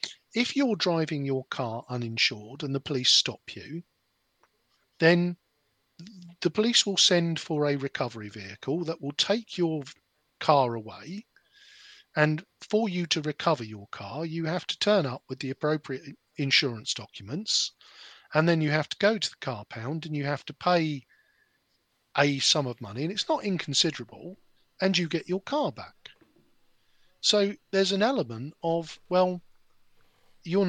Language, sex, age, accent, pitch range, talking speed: English, male, 50-69, British, 125-180 Hz, 155 wpm